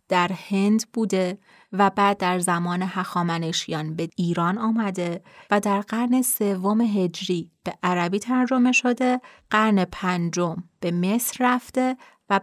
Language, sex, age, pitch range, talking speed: Persian, female, 30-49, 180-225 Hz, 125 wpm